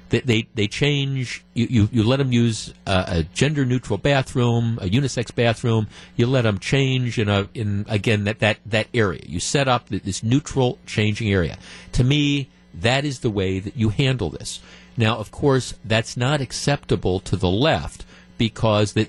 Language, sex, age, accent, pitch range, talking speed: English, male, 50-69, American, 105-130 Hz, 175 wpm